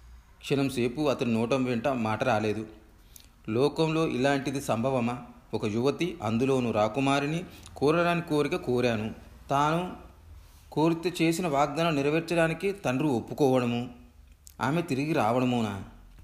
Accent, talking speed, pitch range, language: native, 95 wpm, 110-145 Hz, Telugu